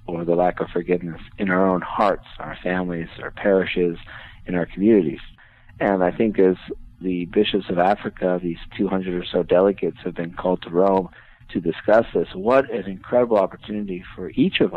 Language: English